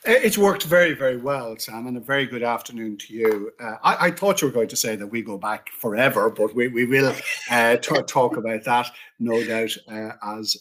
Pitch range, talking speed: 110-145 Hz, 220 wpm